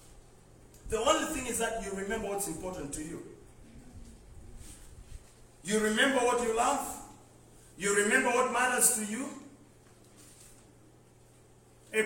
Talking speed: 115 wpm